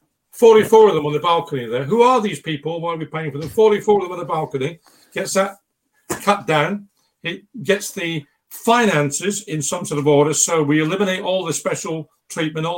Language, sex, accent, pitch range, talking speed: English, male, British, 140-185 Hz, 205 wpm